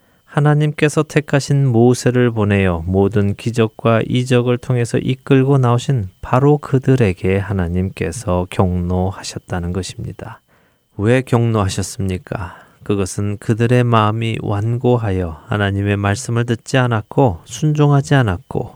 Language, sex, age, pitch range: Korean, male, 20-39, 95-125 Hz